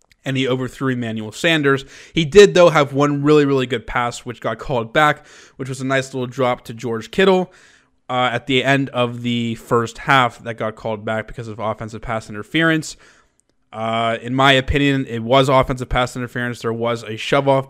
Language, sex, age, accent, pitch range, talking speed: English, male, 20-39, American, 115-135 Hz, 195 wpm